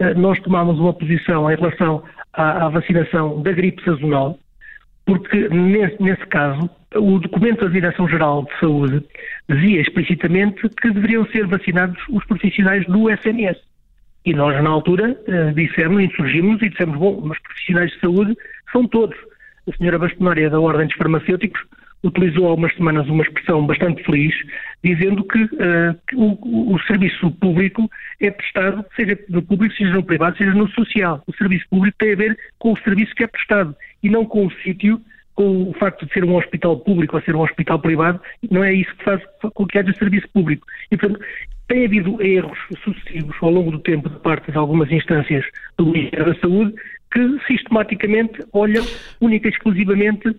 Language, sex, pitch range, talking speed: Portuguese, male, 165-210 Hz, 175 wpm